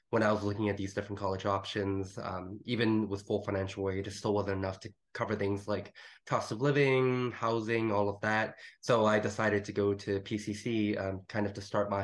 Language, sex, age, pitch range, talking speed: English, male, 20-39, 100-115 Hz, 215 wpm